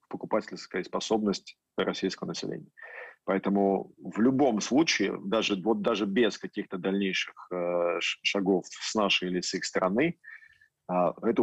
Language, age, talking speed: Russian, 40-59, 110 wpm